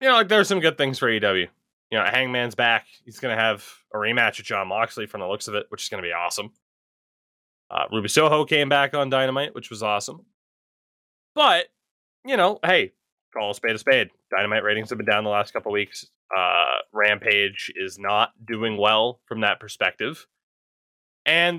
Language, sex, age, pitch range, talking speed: English, male, 20-39, 105-145 Hz, 205 wpm